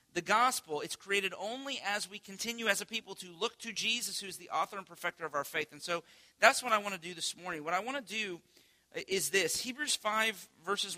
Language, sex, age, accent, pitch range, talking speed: English, male, 40-59, American, 150-205 Hz, 240 wpm